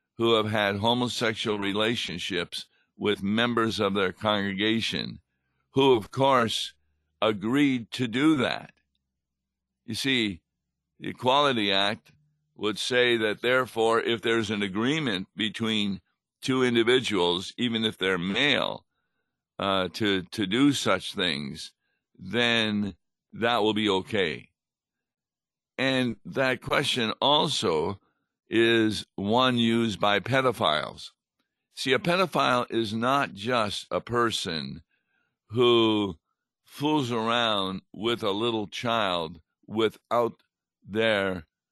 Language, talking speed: English, 105 wpm